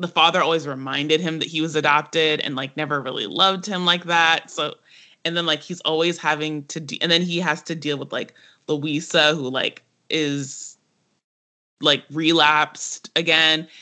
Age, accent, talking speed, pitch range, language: 20-39, American, 175 wpm, 150-175 Hz, English